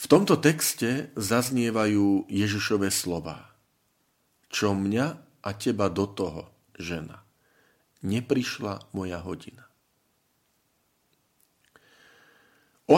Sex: male